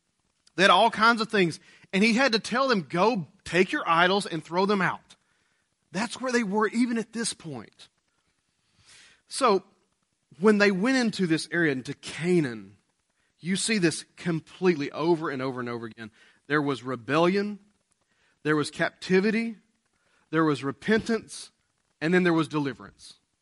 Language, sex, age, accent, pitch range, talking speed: English, male, 30-49, American, 155-220 Hz, 155 wpm